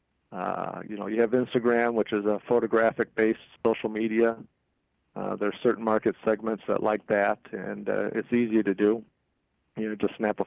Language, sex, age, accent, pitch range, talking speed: English, male, 50-69, American, 110-120 Hz, 185 wpm